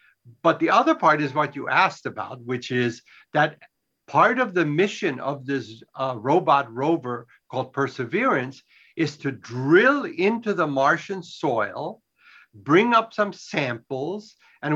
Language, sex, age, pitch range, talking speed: English, male, 60-79, 130-170 Hz, 140 wpm